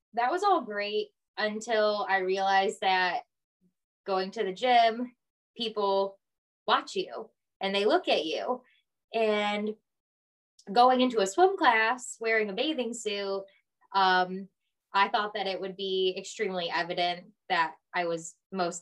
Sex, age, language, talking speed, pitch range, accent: female, 20-39, English, 135 wpm, 195-240 Hz, American